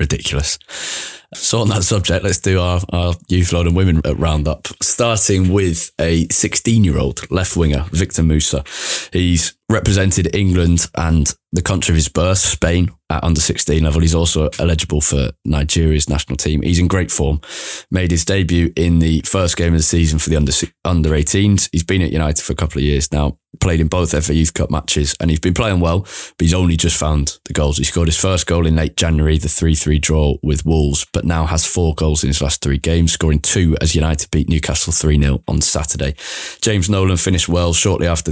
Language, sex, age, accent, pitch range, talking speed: English, male, 20-39, British, 75-85 Hz, 205 wpm